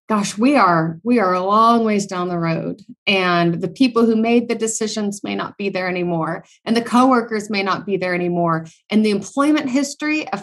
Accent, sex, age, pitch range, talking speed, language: American, female, 30-49, 175-215 Hz, 205 wpm, English